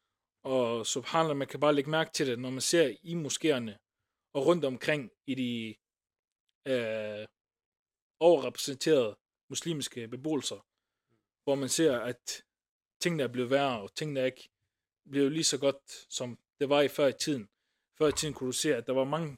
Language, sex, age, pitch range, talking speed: Danish, male, 20-39, 110-150 Hz, 175 wpm